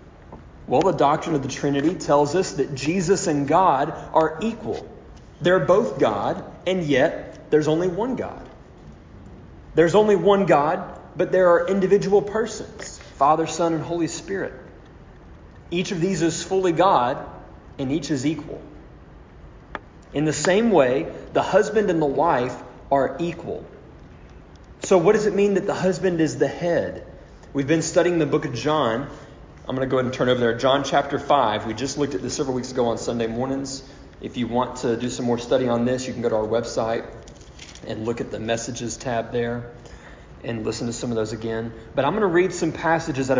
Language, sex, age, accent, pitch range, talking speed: English, male, 30-49, American, 120-170 Hz, 190 wpm